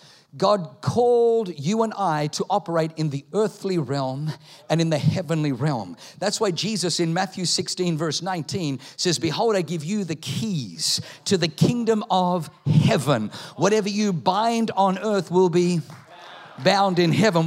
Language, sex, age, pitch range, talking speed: English, male, 50-69, 160-200 Hz, 160 wpm